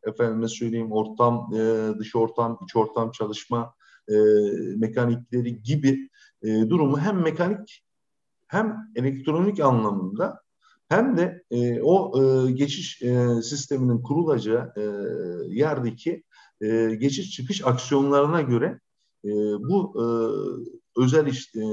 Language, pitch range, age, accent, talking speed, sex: Turkish, 115-160 Hz, 50-69, native, 115 wpm, male